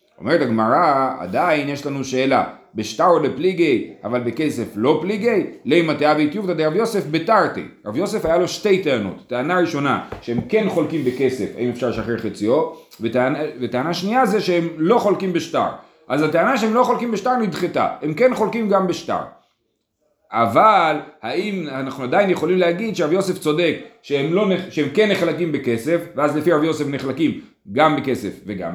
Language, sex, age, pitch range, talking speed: Hebrew, male, 40-59, 125-200 Hz, 160 wpm